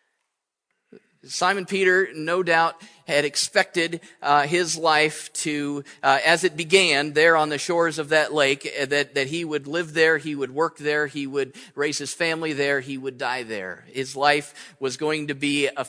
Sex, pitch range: male, 150-195 Hz